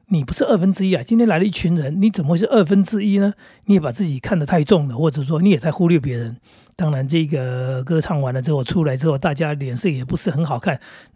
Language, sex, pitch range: Chinese, male, 160-230 Hz